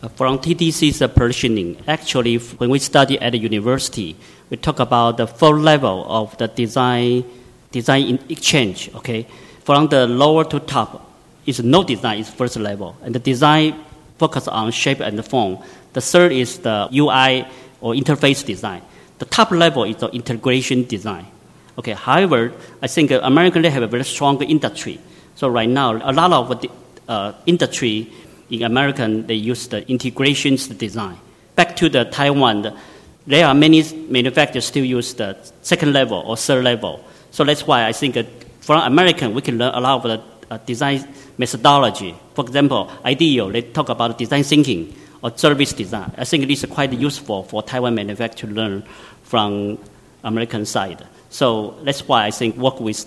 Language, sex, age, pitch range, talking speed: English, male, 50-69, 115-145 Hz, 170 wpm